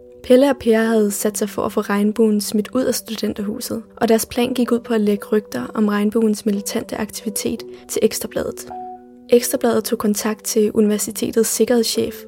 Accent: native